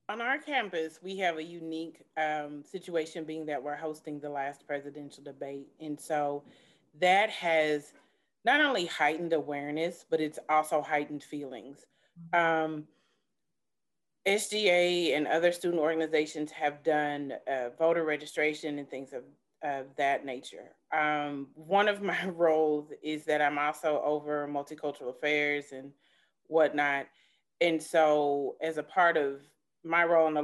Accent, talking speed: American, 140 wpm